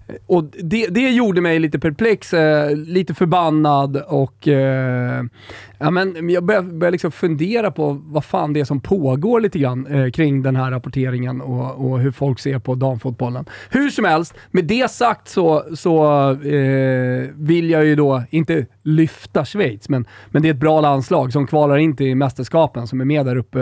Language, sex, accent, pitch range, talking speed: Swedish, male, native, 130-170 Hz, 185 wpm